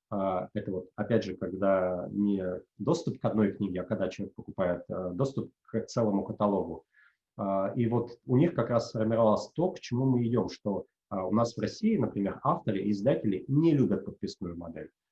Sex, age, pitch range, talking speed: male, 30-49, 100-115 Hz, 175 wpm